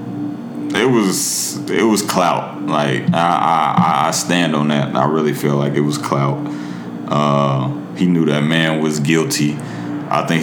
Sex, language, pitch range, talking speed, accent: male, English, 65-95 Hz, 160 wpm, American